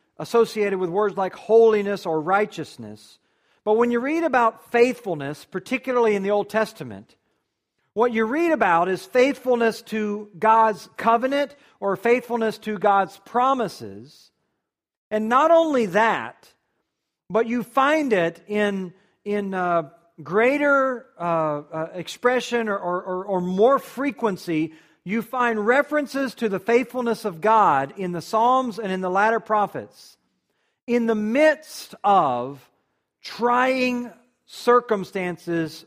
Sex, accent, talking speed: male, American, 125 wpm